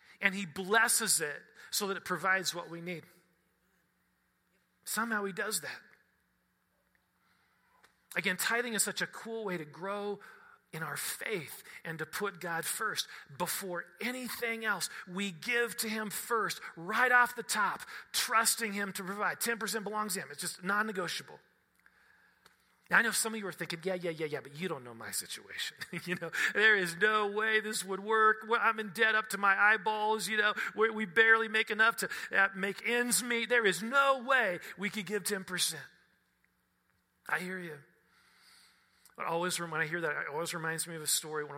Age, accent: 40-59, American